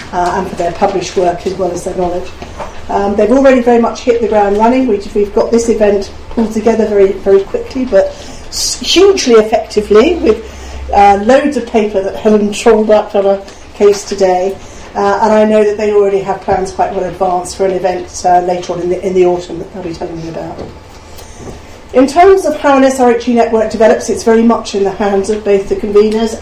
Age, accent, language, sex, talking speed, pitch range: 40-59, British, English, female, 210 wpm, 185-220 Hz